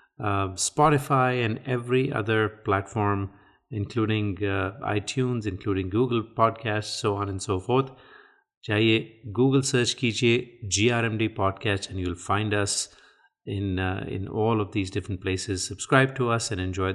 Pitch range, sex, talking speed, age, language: 100-125 Hz, male, 150 wpm, 30-49, Hindi